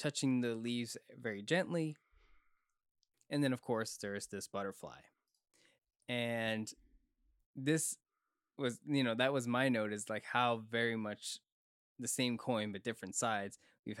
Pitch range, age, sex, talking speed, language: 105-130 Hz, 20-39, male, 140 wpm, English